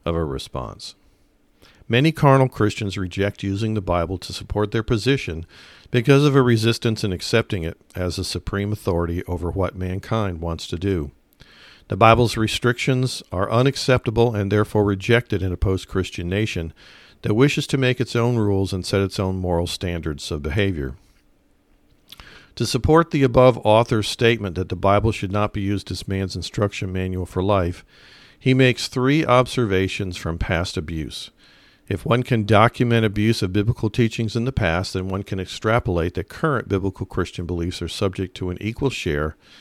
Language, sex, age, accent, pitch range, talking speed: English, male, 50-69, American, 90-115 Hz, 165 wpm